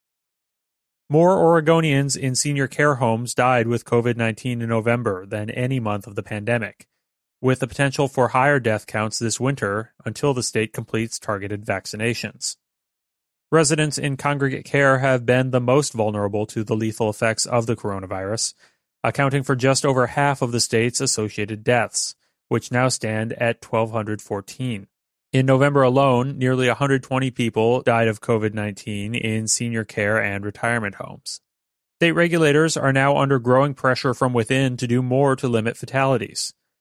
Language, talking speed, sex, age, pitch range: English, 150 wpm, male, 30-49, 110-135 Hz